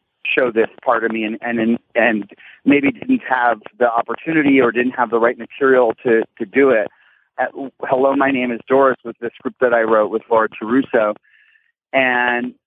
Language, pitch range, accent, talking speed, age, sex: English, 115-140 Hz, American, 180 wpm, 30-49, male